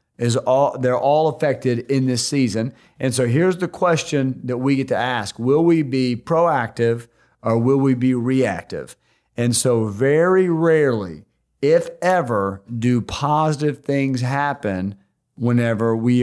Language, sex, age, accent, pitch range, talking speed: English, male, 40-59, American, 120-140 Hz, 145 wpm